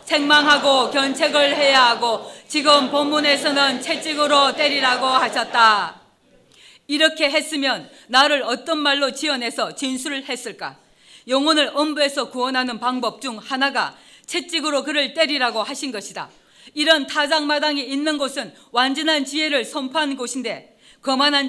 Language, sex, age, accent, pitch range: Korean, female, 40-59, native, 250-295 Hz